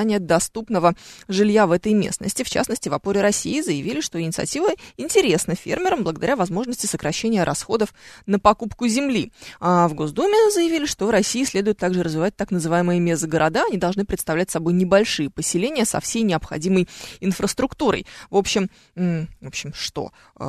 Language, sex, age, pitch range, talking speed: Russian, female, 20-39, 170-225 Hz, 150 wpm